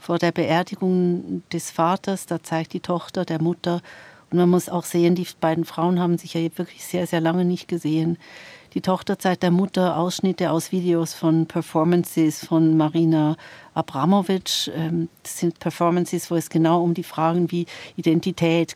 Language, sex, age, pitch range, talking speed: German, female, 60-79, 165-190 Hz, 165 wpm